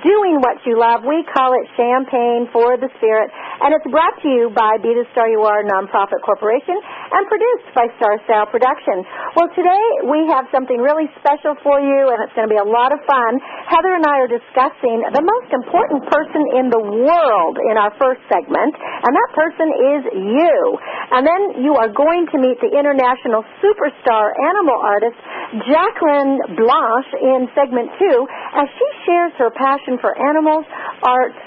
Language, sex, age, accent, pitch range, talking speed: English, female, 50-69, American, 235-315 Hz, 180 wpm